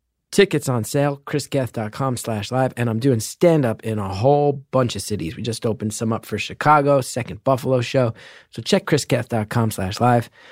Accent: American